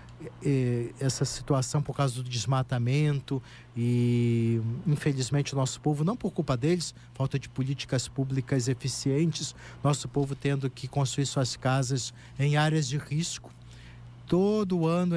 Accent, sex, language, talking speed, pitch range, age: Brazilian, male, Portuguese, 130 wpm, 130-155 Hz, 50-69